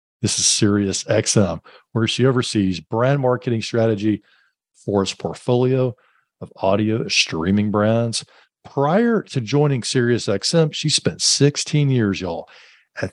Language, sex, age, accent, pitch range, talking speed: English, male, 50-69, American, 100-145 Hz, 120 wpm